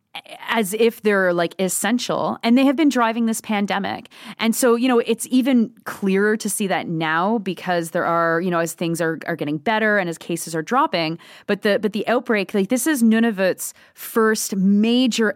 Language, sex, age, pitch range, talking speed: English, female, 30-49, 175-230 Hz, 195 wpm